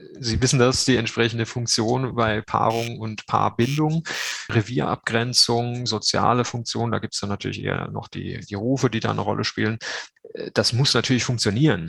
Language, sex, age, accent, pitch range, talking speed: German, male, 30-49, German, 110-135 Hz, 165 wpm